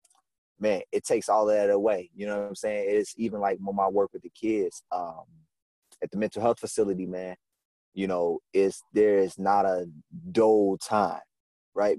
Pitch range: 95-125 Hz